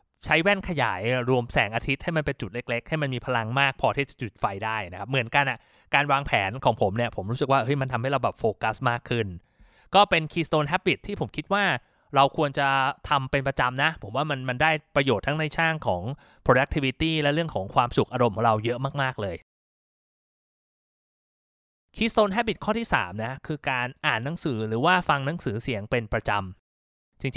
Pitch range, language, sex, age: 115-155 Hz, Thai, male, 20-39